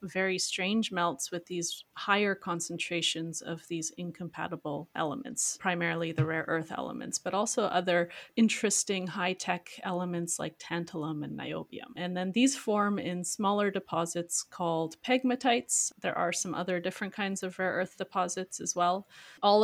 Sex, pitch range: female, 175-215 Hz